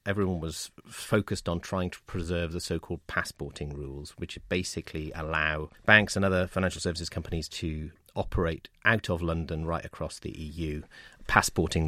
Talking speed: 150 wpm